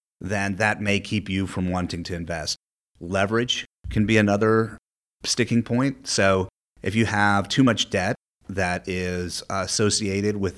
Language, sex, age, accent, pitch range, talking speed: English, male, 30-49, American, 90-105 Hz, 145 wpm